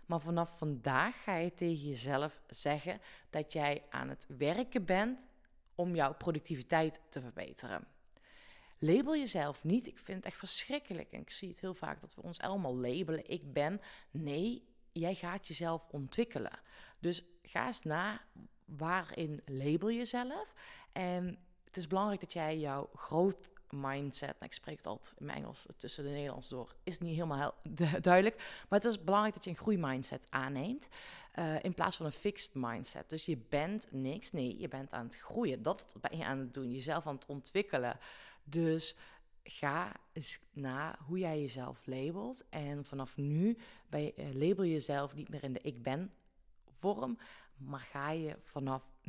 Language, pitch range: Dutch, 140-185 Hz